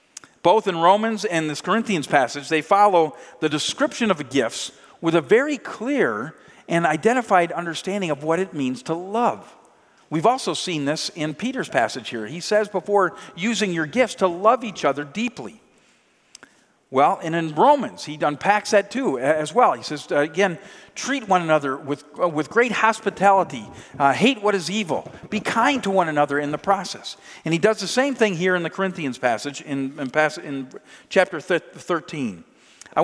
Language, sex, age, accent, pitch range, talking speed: English, male, 50-69, American, 155-210 Hz, 175 wpm